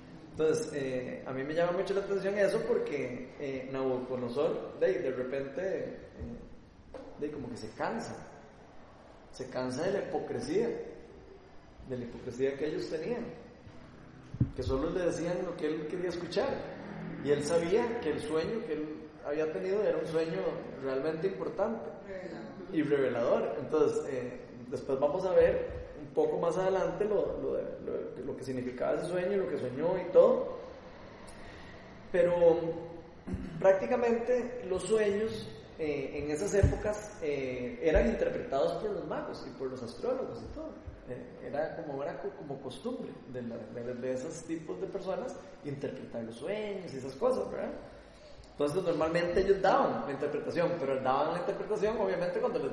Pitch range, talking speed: 145-210 Hz, 150 wpm